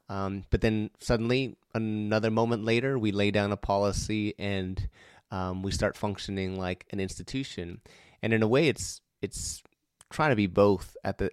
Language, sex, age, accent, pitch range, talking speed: English, male, 20-39, American, 95-110 Hz, 170 wpm